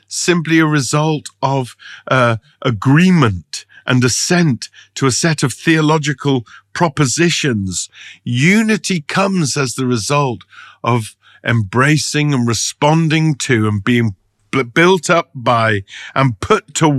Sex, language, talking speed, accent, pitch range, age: male, English, 115 wpm, British, 105-150 Hz, 50-69